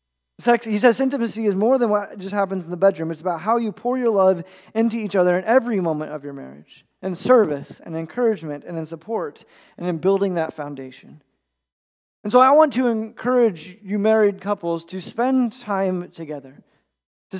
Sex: male